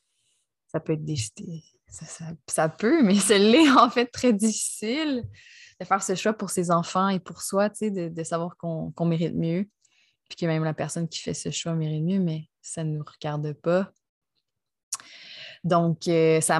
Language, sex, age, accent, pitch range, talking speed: French, female, 20-39, Canadian, 160-185 Hz, 175 wpm